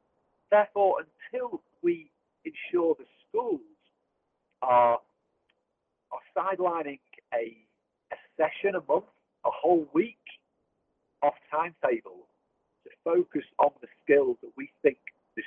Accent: British